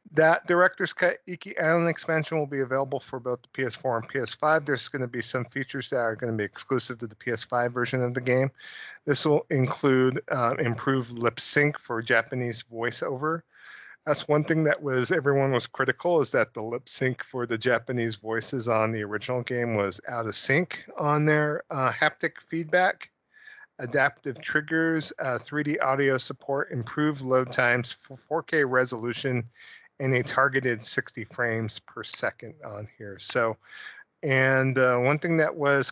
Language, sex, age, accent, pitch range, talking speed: English, male, 40-59, American, 115-145 Hz, 170 wpm